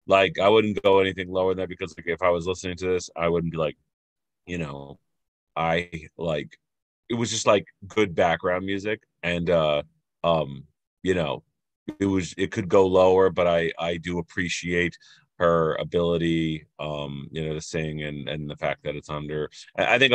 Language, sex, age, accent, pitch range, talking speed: English, male, 30-49, American, 85-105 Hz, 190 wpm